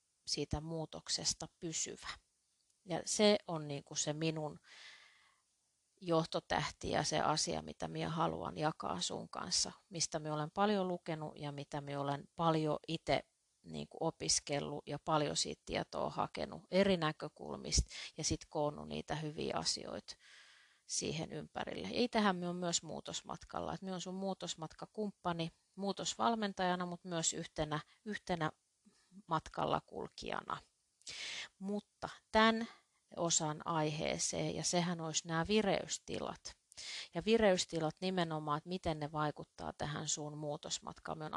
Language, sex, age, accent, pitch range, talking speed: Finnish, female, 30-49, native, 150-185 Hz, 125 wpm